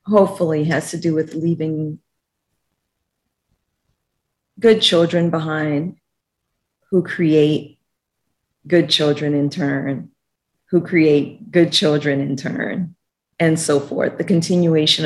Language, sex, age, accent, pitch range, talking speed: English, female, 40-59, American, 150-175 Hz, 105 wpm